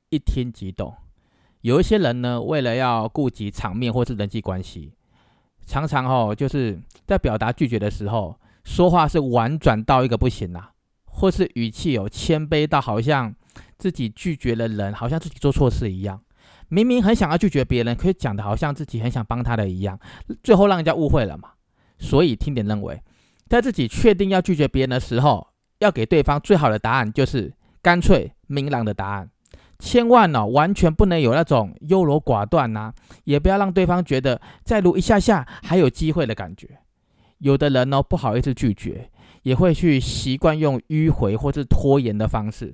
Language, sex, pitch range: Chinese, male, 115-160 Hz